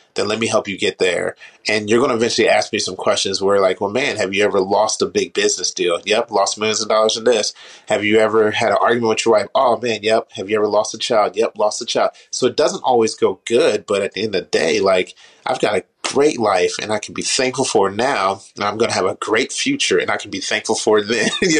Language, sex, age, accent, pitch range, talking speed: English, male, 30-49, American, 105-135 Hz, 280 wpm